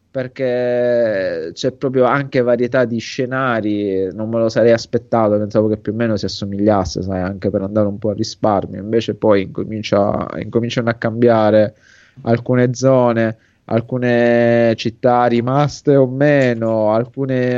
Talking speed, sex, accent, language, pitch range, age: 135 wpm, male, native, Italian, 110-125 Hz, 20-39